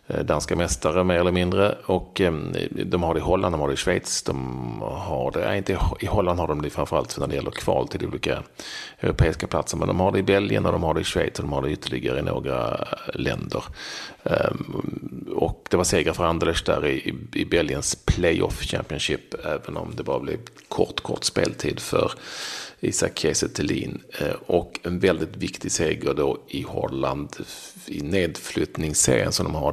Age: 40-59